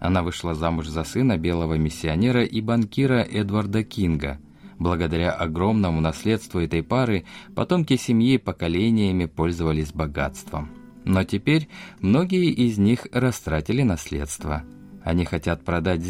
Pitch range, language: 80-115 Hz, Russian